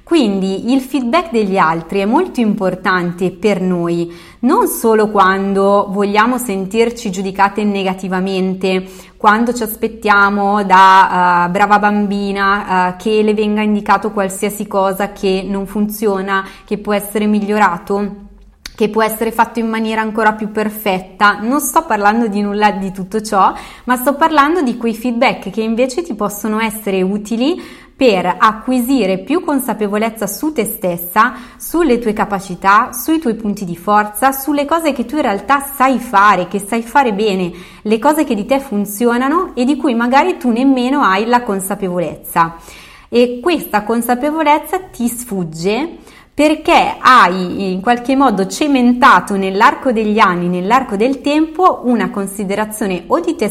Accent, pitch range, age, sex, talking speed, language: native, 195-245 Hz, 20-39, female, 145 wpm, Italian